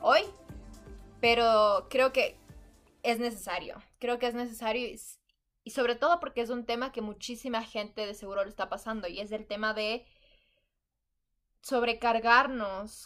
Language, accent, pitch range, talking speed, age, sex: Spanish, Mexican, 200-240 Hz, 140 wpm, 20-39, female